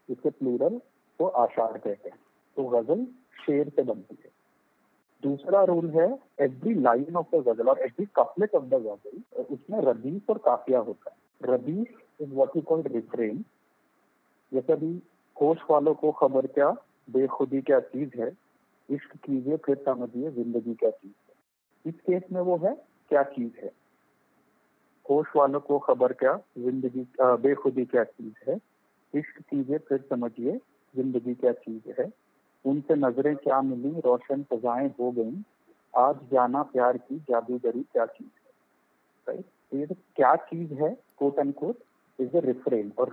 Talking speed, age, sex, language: 110 wpm, 50-69, male, Hindi